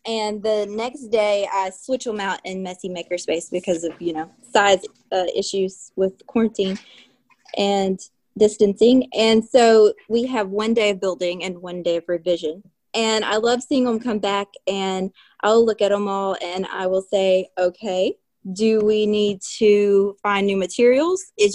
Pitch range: 185-225 Hz